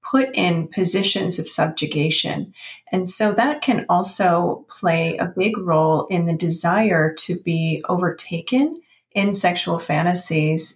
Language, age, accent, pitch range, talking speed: English, 30-49, American, 170-220 Hz, 130 wpm